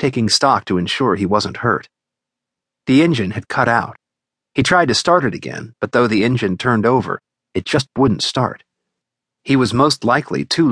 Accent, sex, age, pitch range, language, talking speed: American, male, 40-59, 95-135 Hz, English, 185 wpm